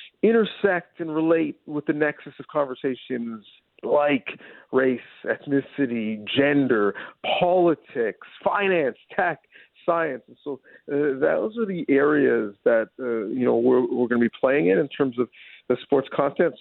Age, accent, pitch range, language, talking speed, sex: 50-69, American, 120-155 Hz, English, 145 wpm, male